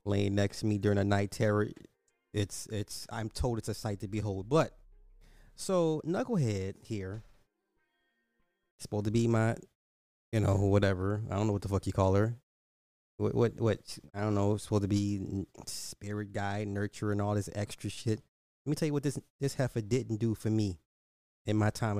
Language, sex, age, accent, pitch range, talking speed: English, male, 30-49, American, 100-120 Hz, 185 wpm